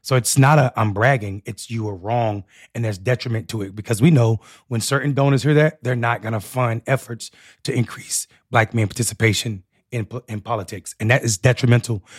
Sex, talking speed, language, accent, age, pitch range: male, 200 wpm, English, American, 30-49, 115-140 Hz